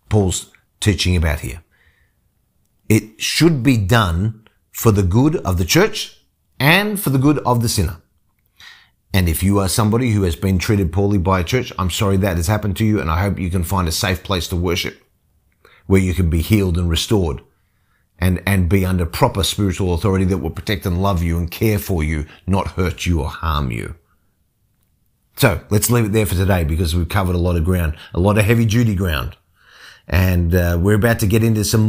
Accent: Australian